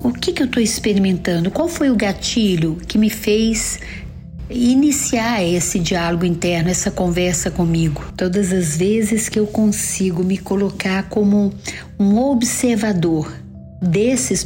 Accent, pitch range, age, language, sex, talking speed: Brazilian, 175-225 Hz, 50-69, Portuguese, female, 135 wpm